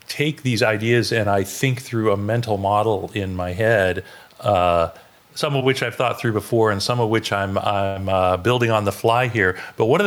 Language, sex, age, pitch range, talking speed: English, male, 40-59, 100-115 Hz, 215 wpm